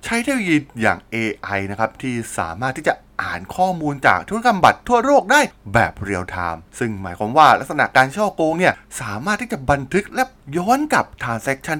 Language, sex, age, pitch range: Thai, male, 20-39, 100-165 Hz